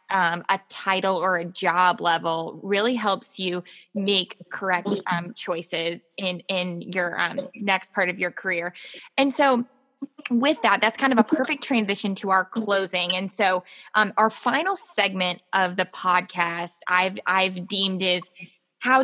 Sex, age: female, 10-29